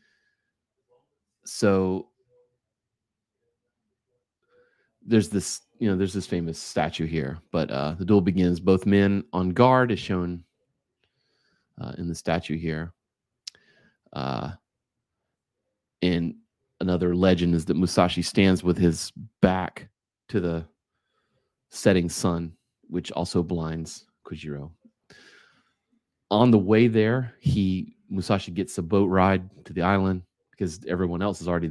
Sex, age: male, 30-49